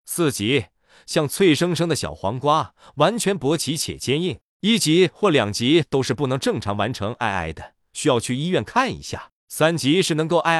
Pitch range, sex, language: 125-170 Hz, male, Chinese